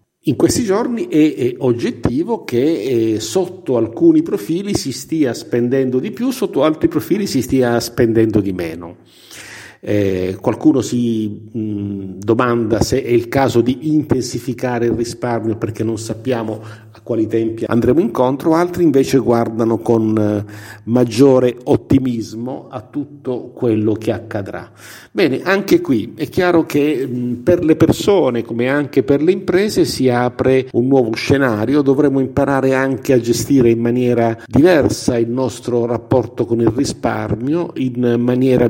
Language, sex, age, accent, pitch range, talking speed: Italian, male, 50-69, native, 115-145 Hz, 140 wpm